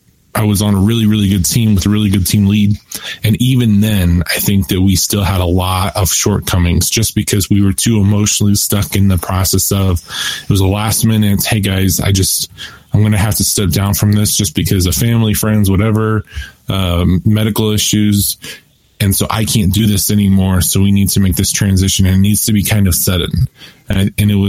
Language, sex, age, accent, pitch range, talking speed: English, male, 20-39, American, 95-105 Hz, 220 wpm